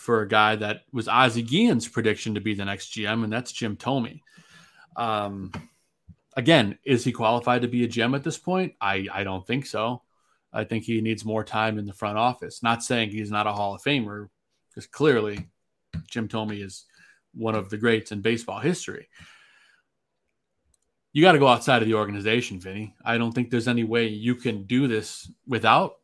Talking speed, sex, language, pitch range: 195 wpm, male, English, 105-120 Hz